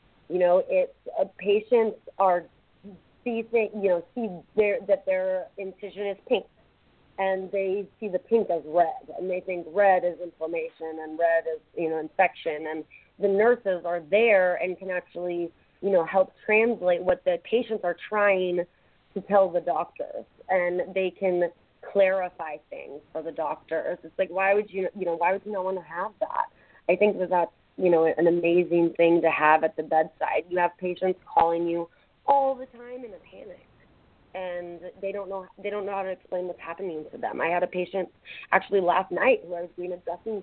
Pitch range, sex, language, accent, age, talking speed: 170-200 Hz, female, English, American, 30-49, 195 wpm